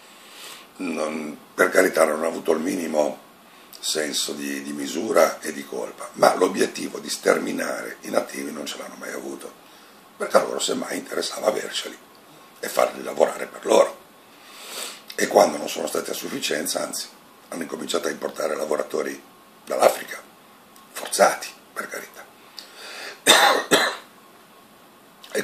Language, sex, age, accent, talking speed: Italian, male, 60-79, native, 130 wpm